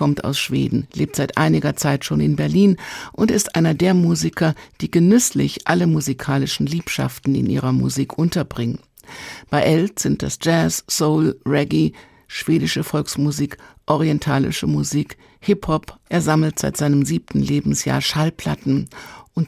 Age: 60-79